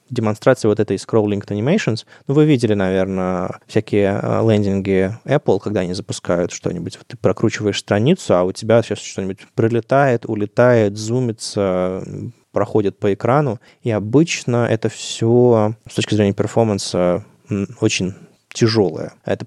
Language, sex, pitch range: Russian, male, 100-120 Hz